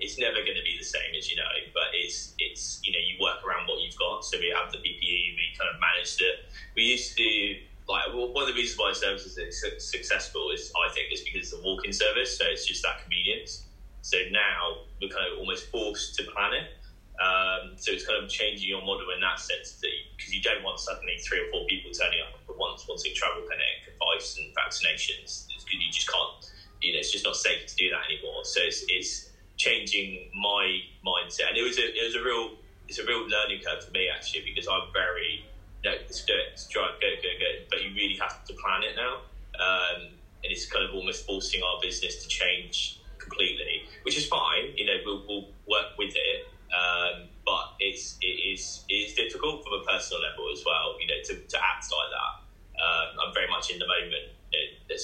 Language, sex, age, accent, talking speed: English, male, 10-29, British, 225 wpm